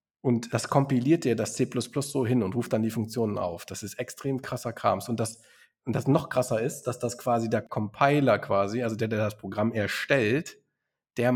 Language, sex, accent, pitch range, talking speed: German, male, German, 115-150 Hz, 200 wpm